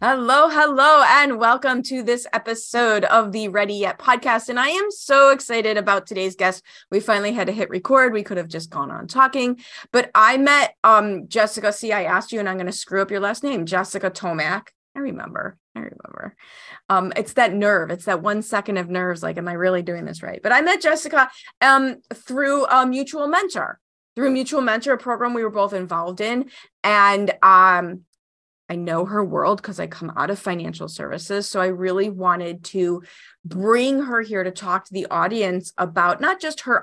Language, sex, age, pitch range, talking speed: English, female, 20-39, 185-250 Hz, 200 wpm